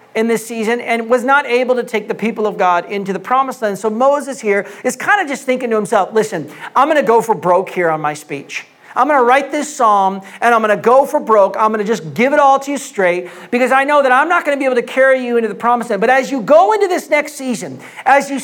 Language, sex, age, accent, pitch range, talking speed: English, male, 40-59, American, 210-260 Hz, 285 wpm